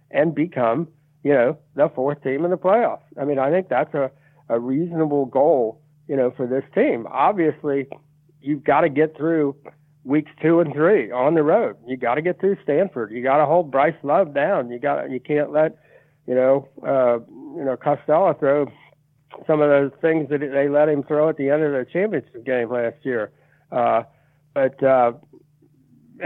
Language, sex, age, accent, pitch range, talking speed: English, male, 60-79, American, 135-155 Hz, 190 wpm